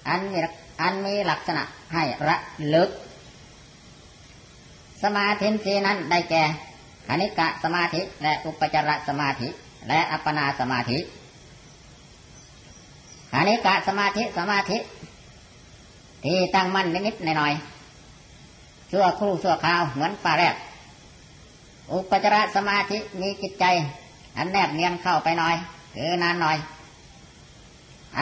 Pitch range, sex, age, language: 155-195 Hz, male, 30-49, Thai